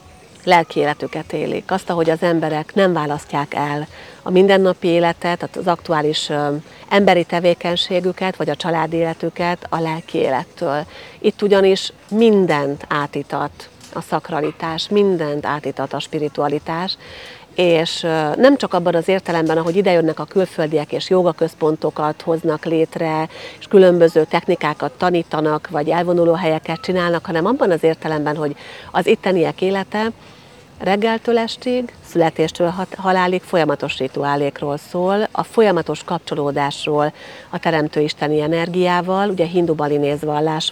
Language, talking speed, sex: Hungarian, 120 wpm, female